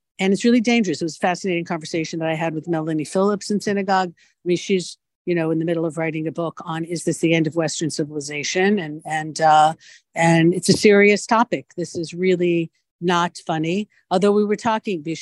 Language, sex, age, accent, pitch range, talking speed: English, female, 50-69, American, 155-185 Hz, 215 wpm